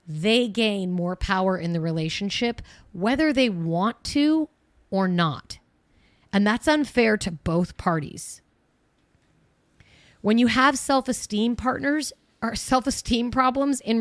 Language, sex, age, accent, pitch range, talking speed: English, female, 30-49, American, 180-225 Hz, 120 wpm